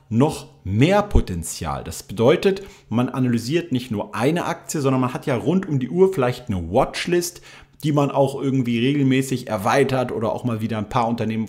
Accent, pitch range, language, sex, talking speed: German, 120-150 Hz, German, male, 185 wpm